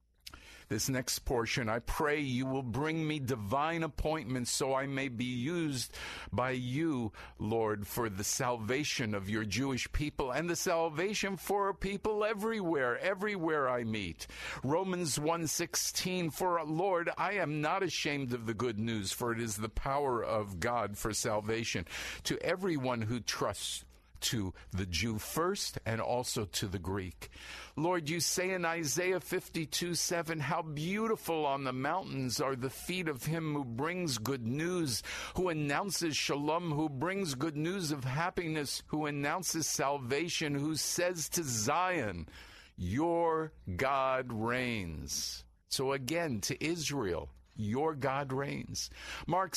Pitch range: 115-165 Hz